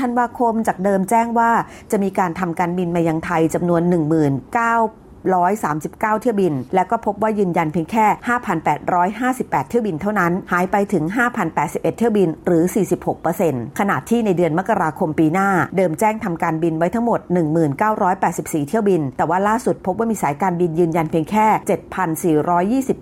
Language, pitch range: Thai, 170-220 Hz